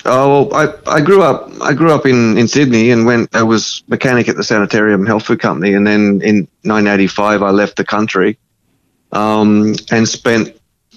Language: English